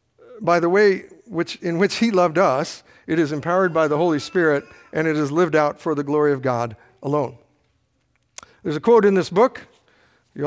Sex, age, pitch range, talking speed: male, 50-69, 155-205 Hz, 195 wpm